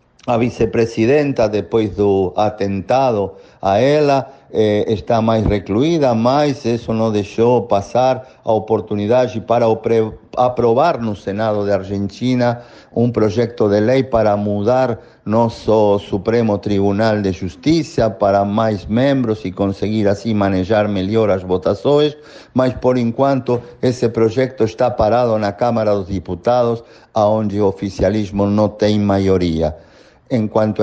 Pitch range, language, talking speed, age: 100-125 Hz, Portuguese, 120 wpm, 50-69